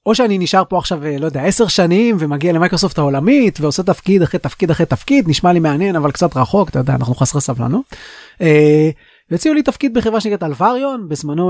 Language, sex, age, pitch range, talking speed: Hebrew, male, 30-49, 150-195 Hz, 190 wpm